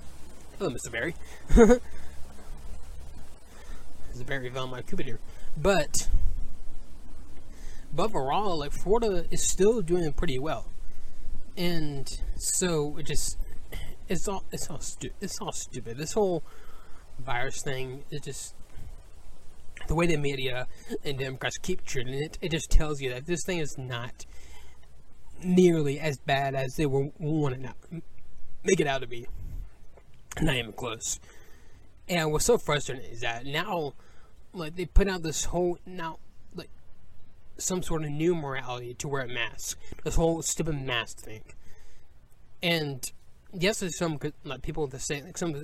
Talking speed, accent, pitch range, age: 145 wpm, American, 100-165 Hz, 20-39